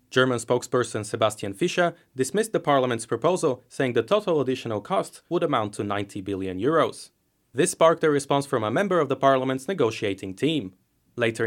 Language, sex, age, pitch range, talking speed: English, male, 30-49, 115-160 Hz, 165 wpm